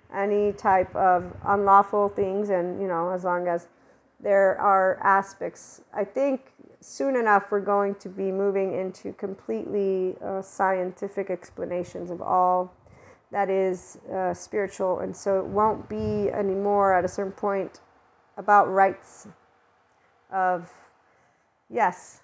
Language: English